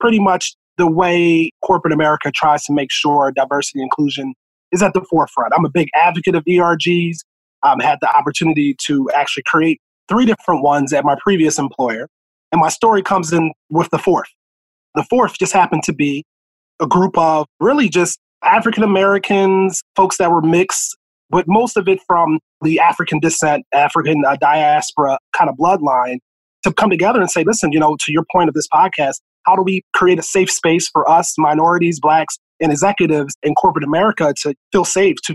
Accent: American